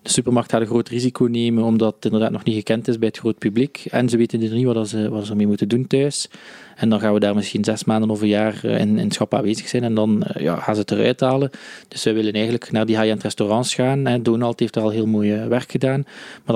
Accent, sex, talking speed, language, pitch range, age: Dutch, male, 270 wpm, Dutch, 110-130 Hz, 20-39